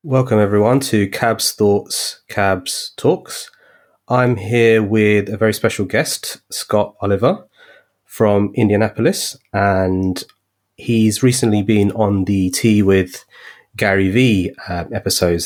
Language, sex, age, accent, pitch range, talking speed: English, male, 30-49, British, 90-110 Hz, 115 wpm